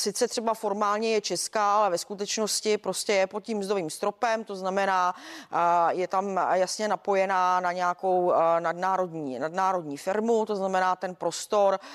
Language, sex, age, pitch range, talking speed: Czech, female, 40-59, 180-210 Hz, 145 wpm